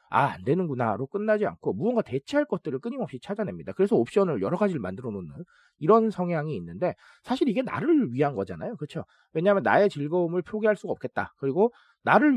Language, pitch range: Korean, 135-215 Hz